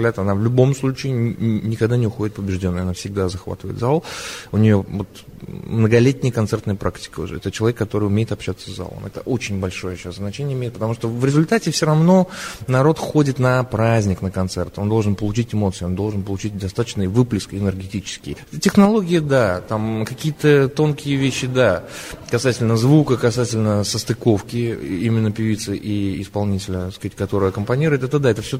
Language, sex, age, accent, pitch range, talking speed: Russian, male, 20-39, native, 100-130 Hz, 160 wpm